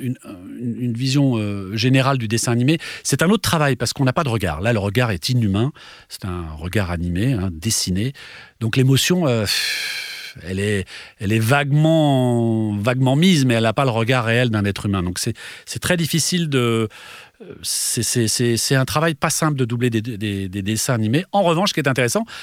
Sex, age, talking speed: male, 40-59, 205 wpm